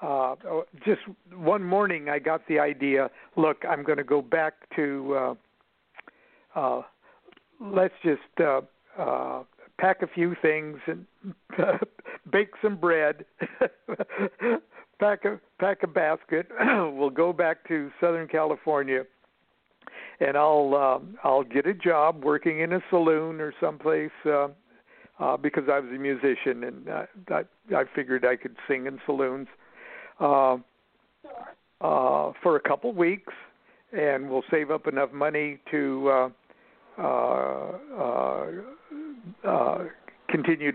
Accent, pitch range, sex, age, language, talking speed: American, 135-175 Hz, male, 60-79, English, 130 wpm